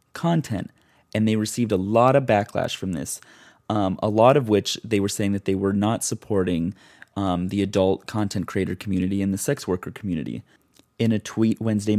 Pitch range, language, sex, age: 100-115 Hz, English, male, 30-49